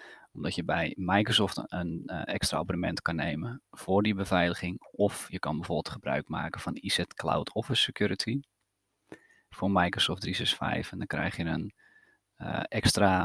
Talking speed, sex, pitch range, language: 155 wpm, male, 95-105 Hz, Dutch